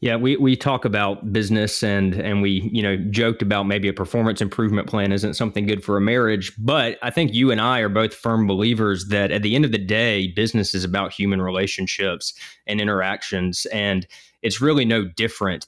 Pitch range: 95-115 Hz